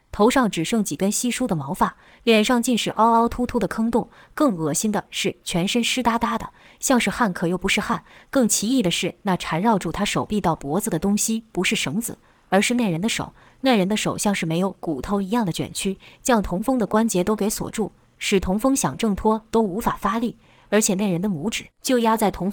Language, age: Chinese, 20-39